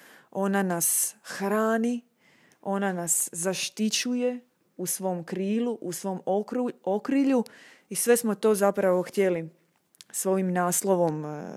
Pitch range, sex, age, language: 170-210 Hz, female, 20-39, Croatian